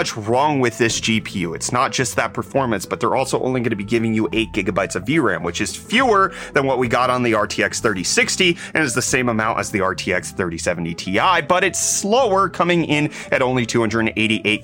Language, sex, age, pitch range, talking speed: English, male, 30-49, 115-160 Hz, 210 wpm